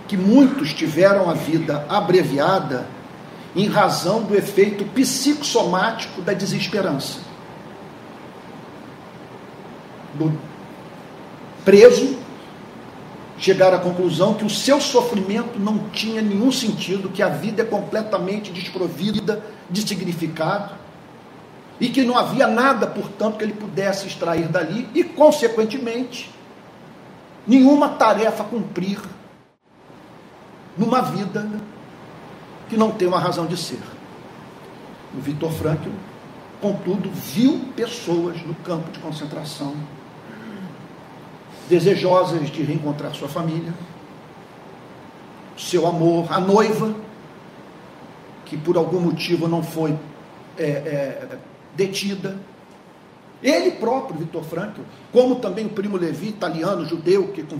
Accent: Brazilian